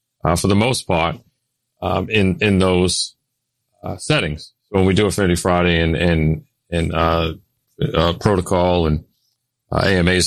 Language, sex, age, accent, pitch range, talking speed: English, male, 40-59, American, 90-120 Hz, 160 wpm